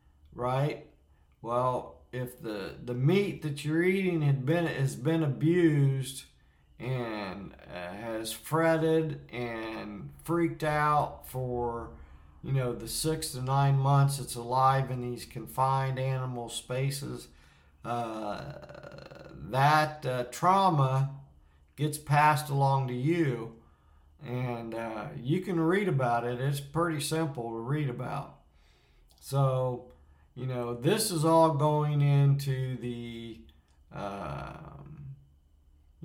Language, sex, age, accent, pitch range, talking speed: English, male, 50-69, American, 115-150 Hz, 115 wpm